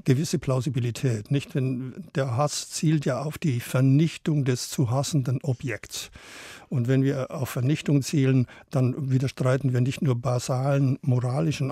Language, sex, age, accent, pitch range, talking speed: German, male, 60-79, German, 130-145 Hz, 140 wpm